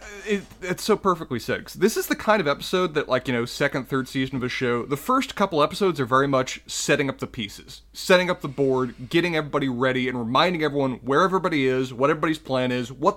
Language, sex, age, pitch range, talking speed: English, male, 30-49, 125-170 Hz, 225 wpm